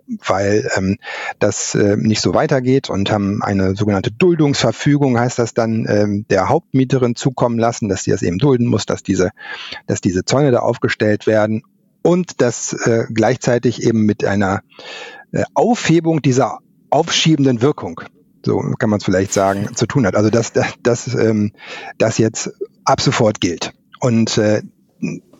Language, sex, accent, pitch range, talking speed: German, male, German, 110-150 Hz, 160 wpm